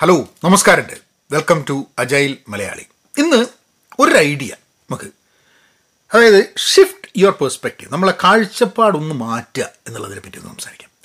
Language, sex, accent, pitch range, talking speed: Malayalam, male, native, 155-225 Hz, 120 wpm